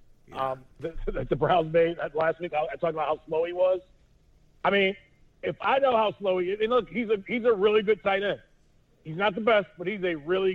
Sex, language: male, English